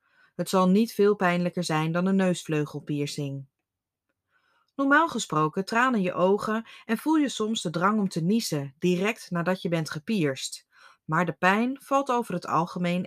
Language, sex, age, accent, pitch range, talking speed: Dutch, female, 30-49, Dutch, 160-230 Hz, 160 wpm